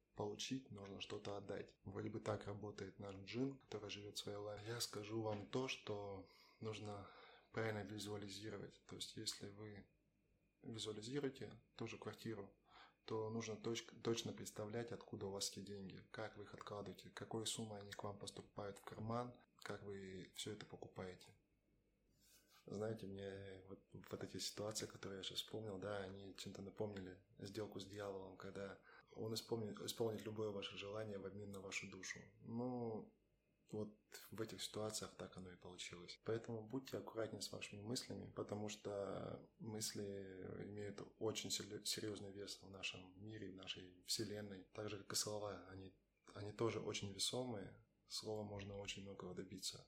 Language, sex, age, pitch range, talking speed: Russian, male, 20-39, 100-110 Hz, 160 wpm